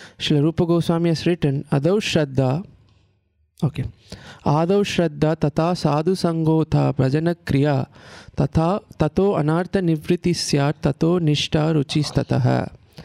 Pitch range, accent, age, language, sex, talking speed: 140-175 Hz, Indian, 20-39, English, male, 95 wpm